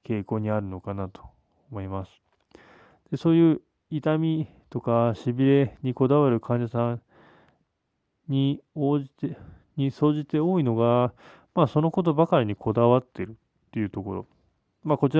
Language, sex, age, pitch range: Japanese, male, 20-39, 110-150 Hz